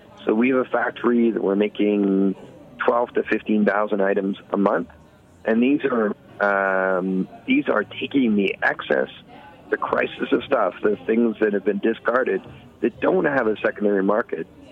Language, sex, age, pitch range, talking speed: English, male, 40-59, 100-120 Hz, 160 wpm